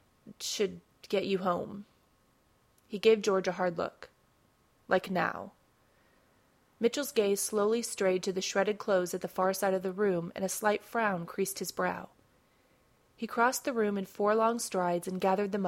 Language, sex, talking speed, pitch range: English, female, 170 wpm, 185-215 Hz